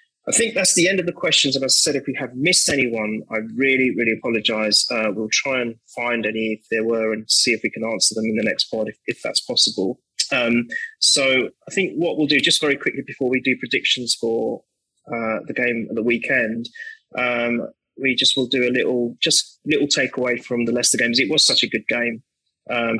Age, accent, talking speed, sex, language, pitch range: 20-39, British, 225 wpm, male, English, 115-135 Hz